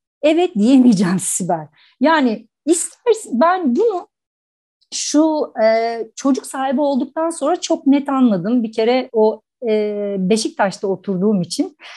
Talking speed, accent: 115 wpm, Turkish